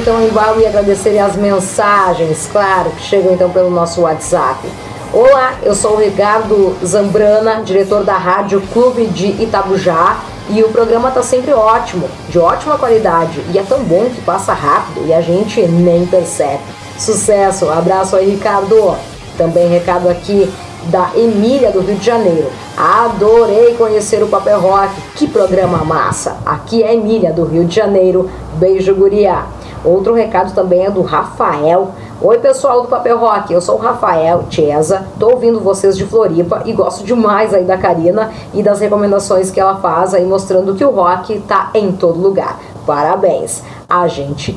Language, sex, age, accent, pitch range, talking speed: Portuguese, female, 10-29, Brazilian, 180-220 Hz, 165 wpm